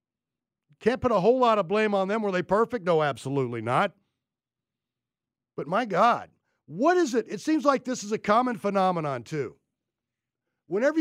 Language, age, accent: English, 50-69, American